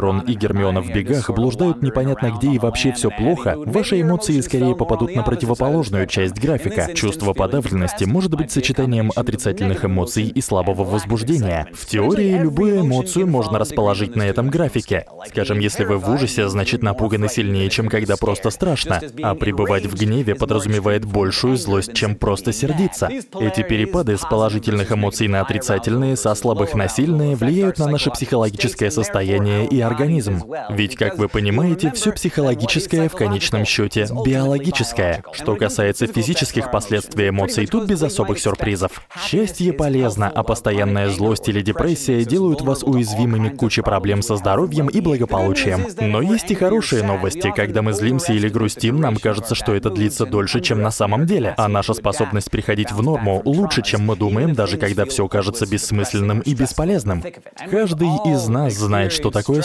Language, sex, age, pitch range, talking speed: Russian, male, 20-39, 105-135 Hz, 155 wpm